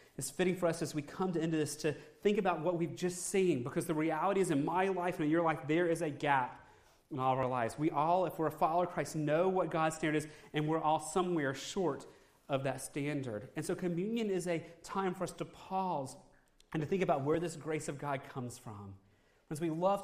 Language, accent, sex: English, American, male